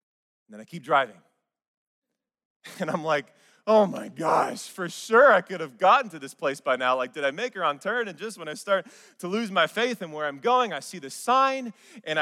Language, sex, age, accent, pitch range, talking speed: English, male, 20-39, American, 155-225 Hz, 230 wpm